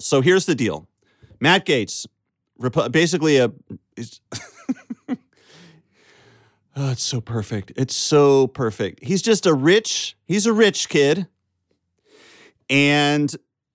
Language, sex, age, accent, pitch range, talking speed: English, male, 30-49, American, 135-190 Hz, 105 wpm